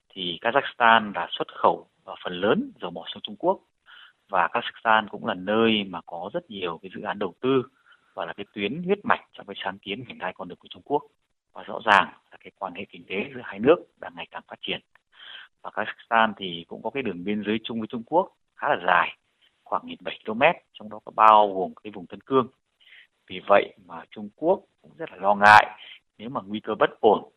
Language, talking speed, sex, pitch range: Vietnamese, 230 wpm, male, 100-115 Hz